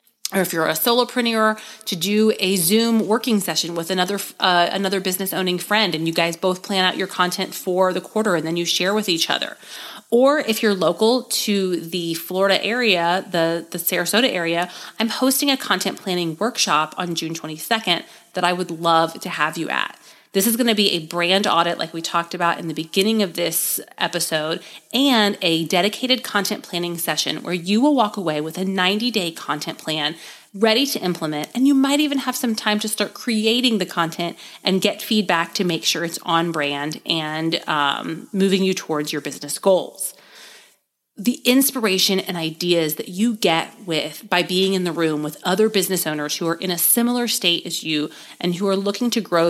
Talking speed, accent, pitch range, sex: 195 wpm, American, 170-220 Hz, female